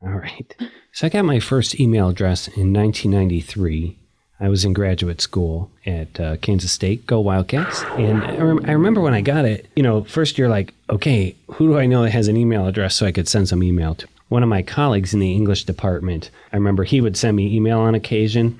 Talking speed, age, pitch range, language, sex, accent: 225 wpm, 30-49, 90-115 Hz, English, male, American